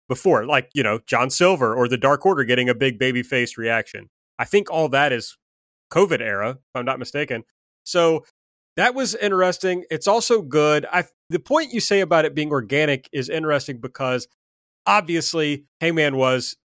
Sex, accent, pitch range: male, American, 125-165 Hz